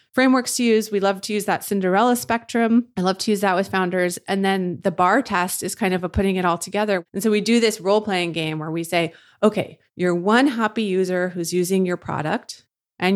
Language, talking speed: English, 230 wpm